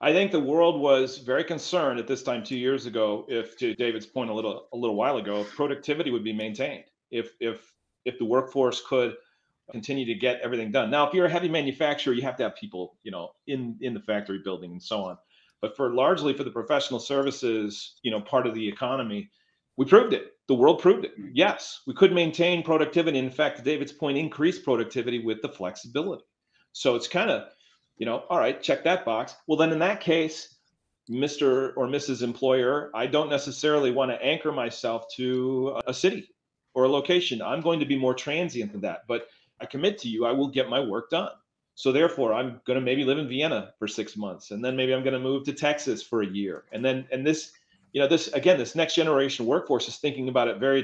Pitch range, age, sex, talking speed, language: 120-150 Hz, 40-59, male, 220 wpm, English